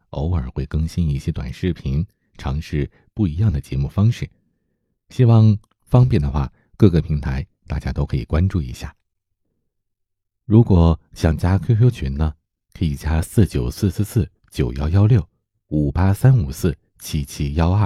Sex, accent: male, native